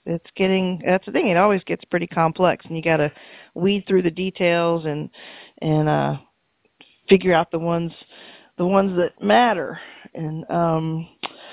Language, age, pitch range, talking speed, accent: English, 40-59, 150-180 Hz, 160 wpm, American